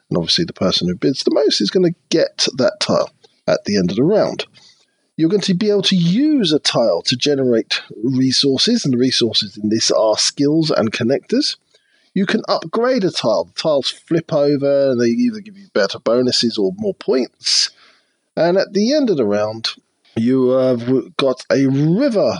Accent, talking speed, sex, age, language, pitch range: British, 190 wpm, male, 40-59, English, 115-185 Hz